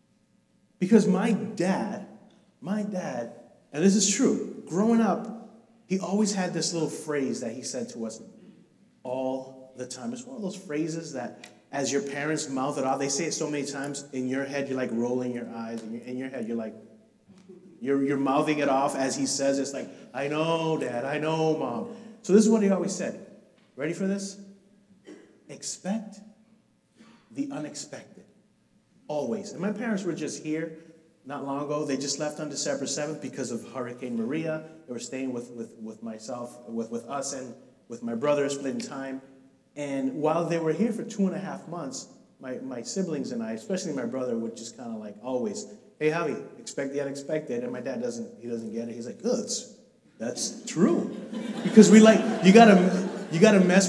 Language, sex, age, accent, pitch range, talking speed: English, male, 30-49, American, 135-210 Hz, 195 wpm